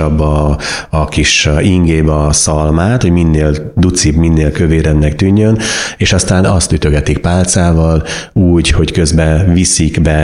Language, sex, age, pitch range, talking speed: Hungarian, male, 30-49, 75-85 Hz, 130 wpm